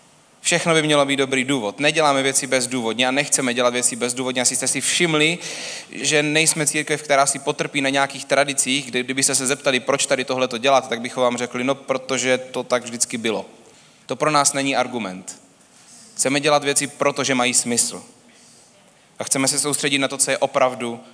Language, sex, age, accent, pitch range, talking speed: Czech, male, 30-49, native, 130-155 Hz, 185 wpm